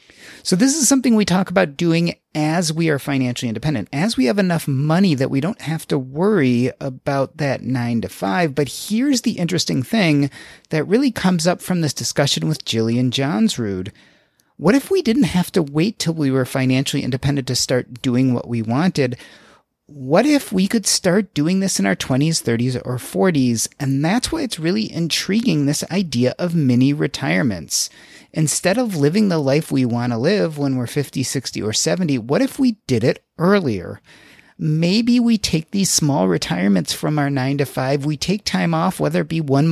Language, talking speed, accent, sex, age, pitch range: English, 190 wpm, American, male, 30-49, 130-185 Hz